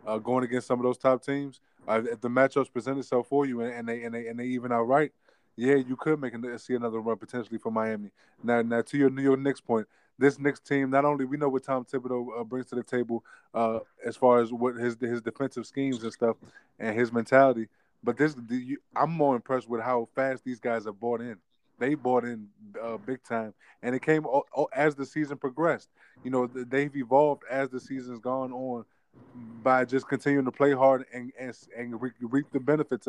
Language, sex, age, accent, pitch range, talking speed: English, male, 20-39, American, 120-140 Hz, 225 wpm